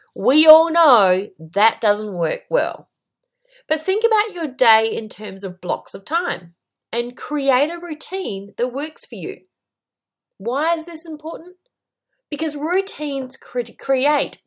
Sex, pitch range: female, 215-320 Hz